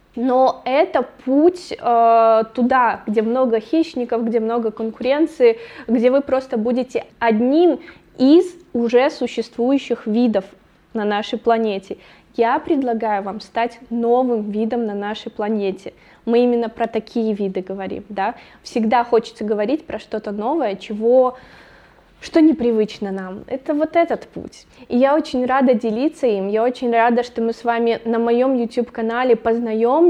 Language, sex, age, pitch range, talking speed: Russian, female, 20-39, 220-255 Hz, 140 wpm